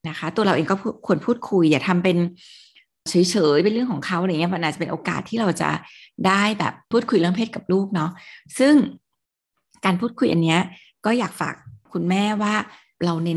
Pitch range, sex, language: 170-210 Hz, female, Thai